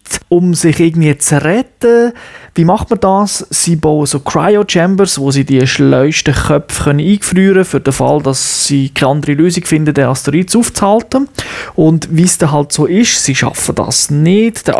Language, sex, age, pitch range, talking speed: German, male, 30-49, 150-190 Hz, 180 wpm